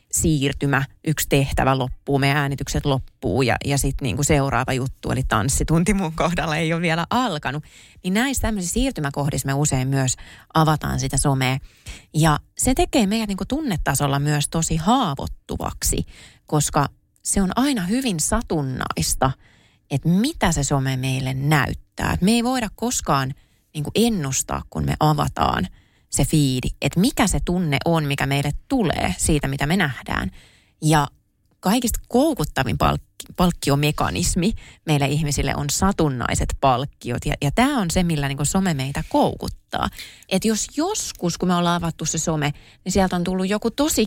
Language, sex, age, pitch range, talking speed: Finnish, female, 20-39, 140-185 Hz, 145 wpm